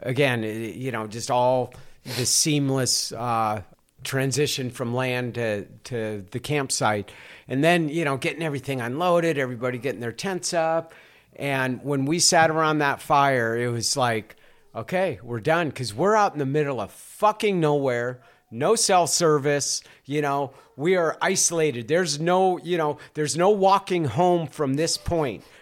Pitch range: 125-160 Hz